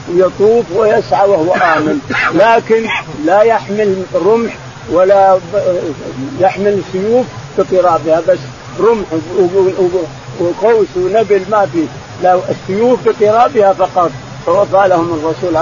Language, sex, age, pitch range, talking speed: Arabic, male, 50-69, 160-195 Hz, 105 wpm